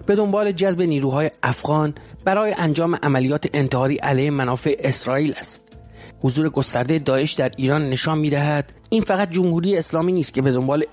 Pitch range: 135-165 Hz